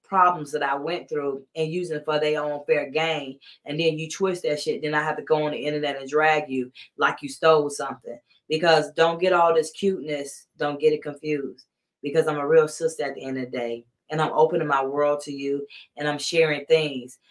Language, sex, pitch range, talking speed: English, female, 145-170 Hz, 225 wpm